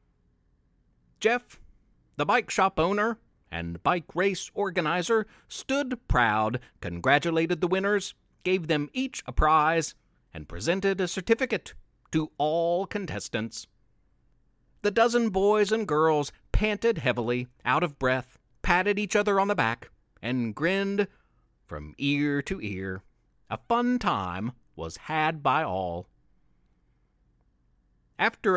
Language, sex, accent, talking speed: English, male, American, 120 wpm